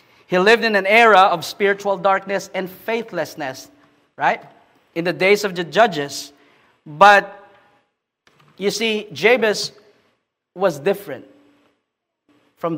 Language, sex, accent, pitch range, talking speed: English, male, Filipino, 160-200 Hz, 115 wpm